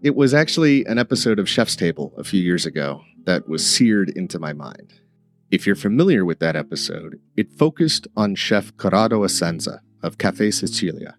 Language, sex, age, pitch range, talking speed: English, male, 40-59, 85-120 Hz, 175 wpm